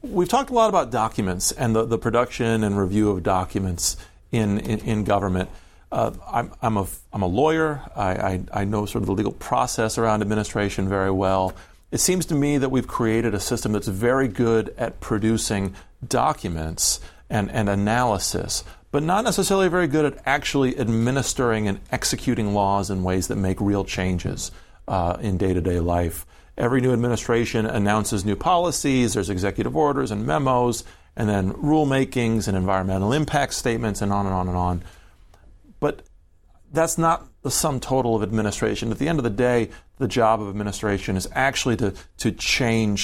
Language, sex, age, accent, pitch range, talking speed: English, male, 40-59, American, 95-120 Hz, 175 wpm